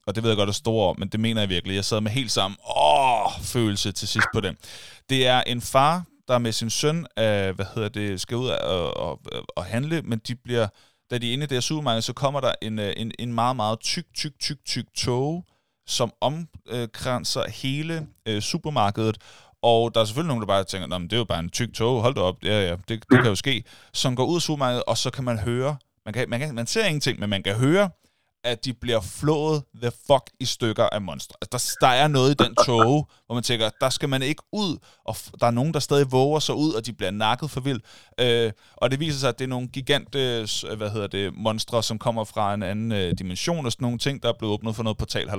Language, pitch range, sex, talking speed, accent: Danish, 110-135 Hz, male, 250 wpm, native